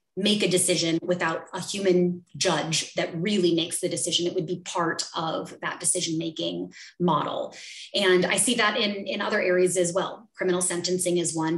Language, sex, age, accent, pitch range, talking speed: English, female, 20-39, American, 175-205 Hz, 180 wpm